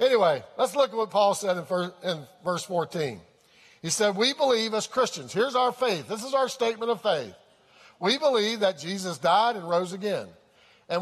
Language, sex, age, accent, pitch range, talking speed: English, male, 50-69, American, 195-250 Hz, 185 wpm